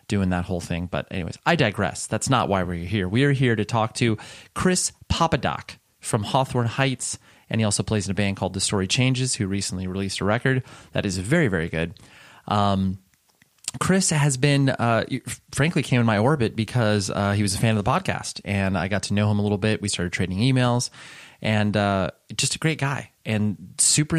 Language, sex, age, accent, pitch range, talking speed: English, male, 30-49, American, 95-125 Hz, 210 wpm